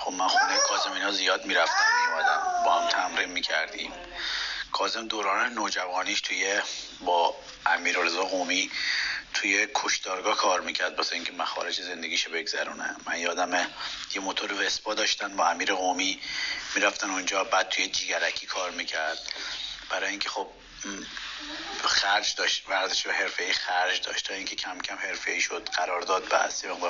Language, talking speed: Persian, 150 wpm